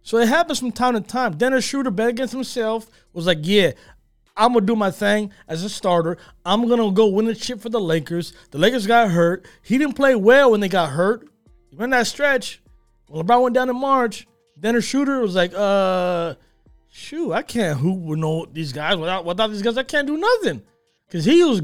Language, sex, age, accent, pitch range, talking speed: English, male, 20-39, American, 180-250 Hz, 220 wpm